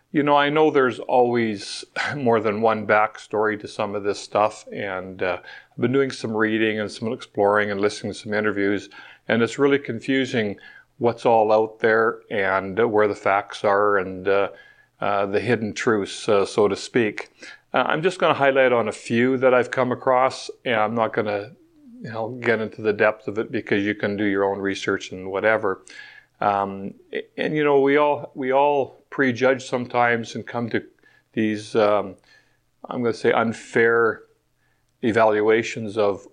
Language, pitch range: English, 105-125 Hz